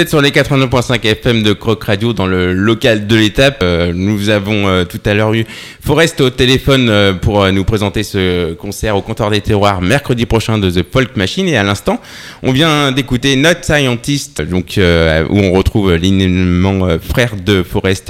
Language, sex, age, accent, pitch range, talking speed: French, male, 20-39, French, 95-125 Hz, 195 wpm